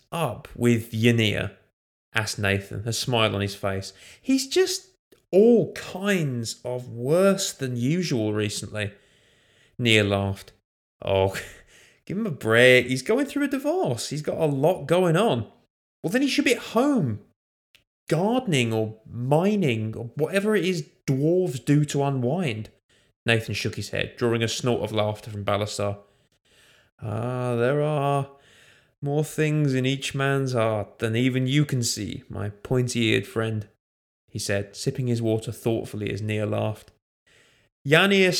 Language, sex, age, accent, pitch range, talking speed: English, male, 20-39, British, 105-155 Hz, 145 wpm